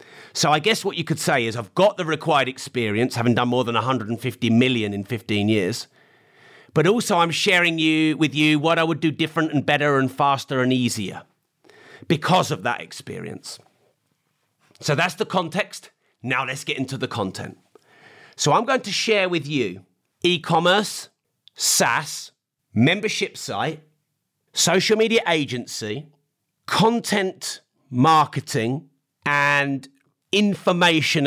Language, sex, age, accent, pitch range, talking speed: English, male, 40-59, British, 130-170 Hz, 135 wpm